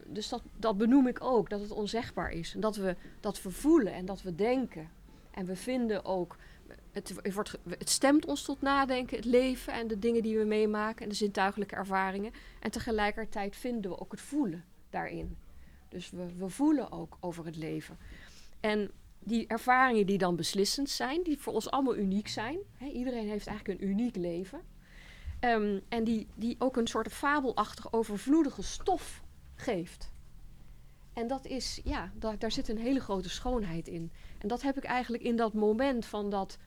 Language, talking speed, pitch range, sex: Dutch, 185 wpm, 190-250 Hz, female